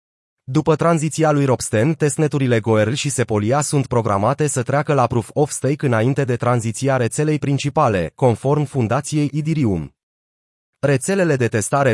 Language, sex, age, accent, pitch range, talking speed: Romanian, male, 30-49, native, 120-150 Hz, 135 wpm